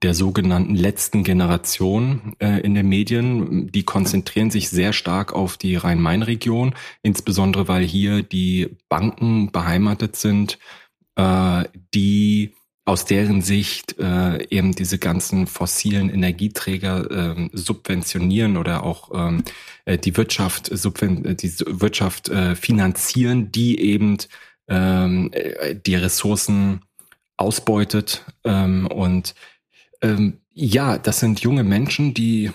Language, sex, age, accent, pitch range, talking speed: German, male, 30-49, German, 95-110 Hz, 110 wpm